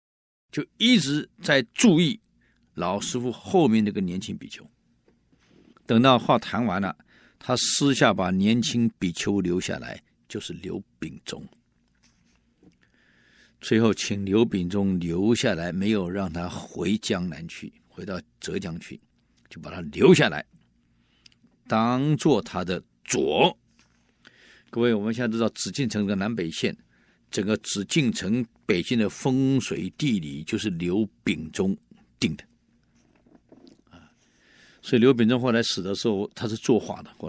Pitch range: 95-125 Hz